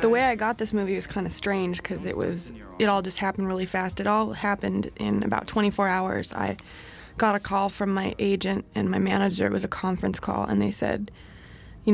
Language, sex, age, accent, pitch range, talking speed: English, female, 20-39, American, 180-205 Hz, 220 wpm